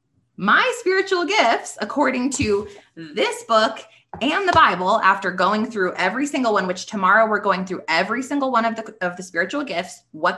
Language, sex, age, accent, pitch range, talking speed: English, female, 20-39, American, 185-265 Hz, 180 wpm